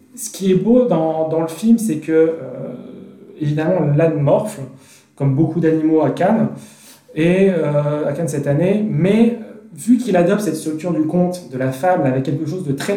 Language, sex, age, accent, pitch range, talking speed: French, male, 30-49, French, 140-205 Hz, 190 wpm